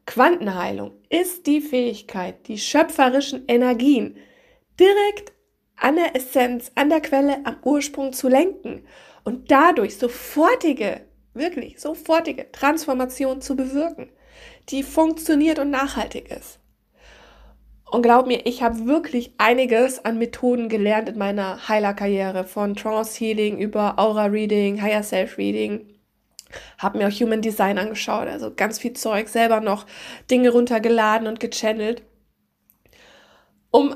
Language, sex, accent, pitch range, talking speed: German, female, German, 220-285 Hz, 125 wpm